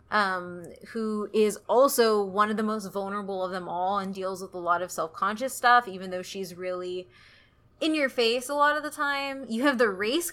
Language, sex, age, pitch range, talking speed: English, female, 20-39, 195-245 Hz, 210 wpm